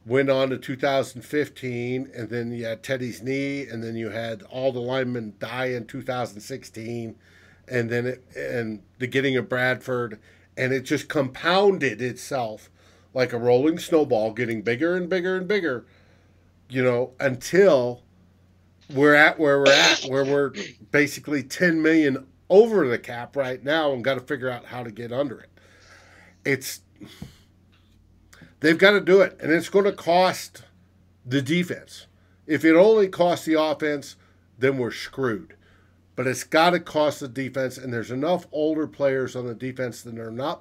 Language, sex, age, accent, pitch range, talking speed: English, male, 50-69, American, 110-145 Hz, 165 wpm